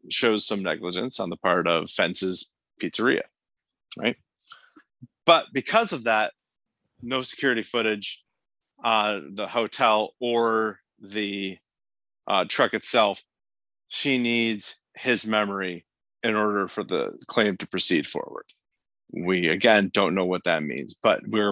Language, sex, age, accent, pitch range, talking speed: English, male, 40-59, American, 100-130 Hz, 130 wpm